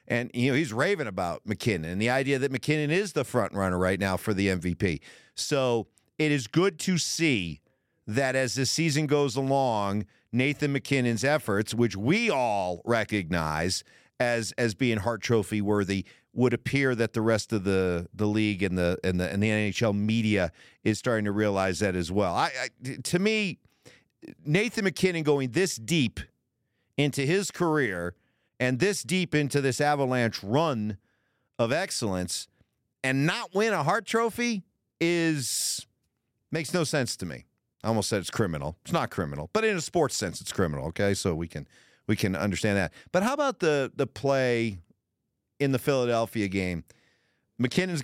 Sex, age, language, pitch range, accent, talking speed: male, 50-69, English, 105-150 Hz, American, 170 wpm